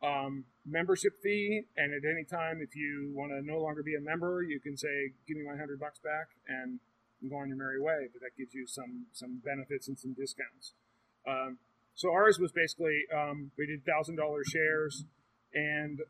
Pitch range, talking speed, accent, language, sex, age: 130-165 Hz, 200 wpm, American, English, male, 30-49